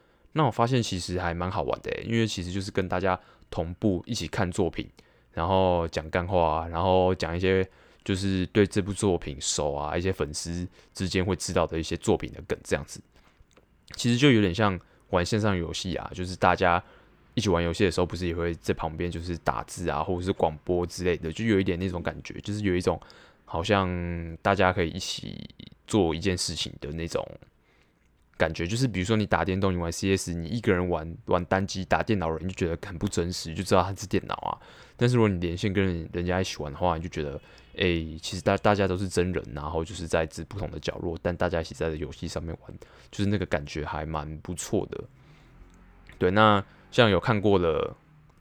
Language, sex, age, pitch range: Chinese, male, 20-39, 85-100 Hz